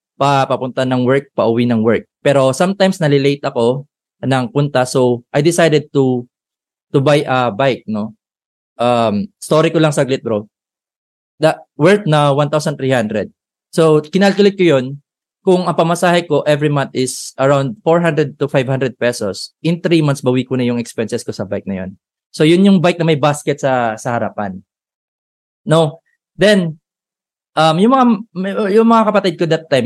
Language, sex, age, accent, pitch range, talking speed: Filipino, male, 20-39, native, 125-170 Hz, 165 wpm